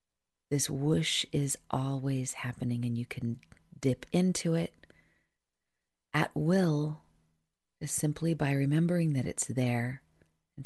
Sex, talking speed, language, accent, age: female, 120 wpm, English, American, 40-59